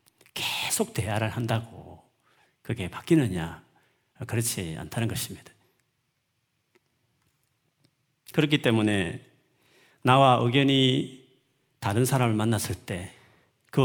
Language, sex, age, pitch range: Korean, male, 40-59, 105-135 Hz